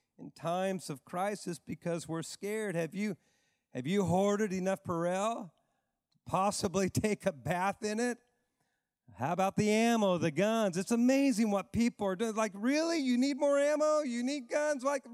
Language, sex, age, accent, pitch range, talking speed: English, male, 40-59, American, 125-210 Hz, 170 wpm